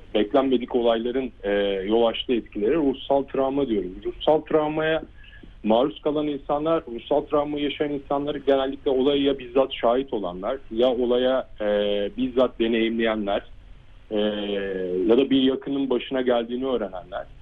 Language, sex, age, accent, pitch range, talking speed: Turkish, male, 40-59, native, 115-145 Hz, 120 wpm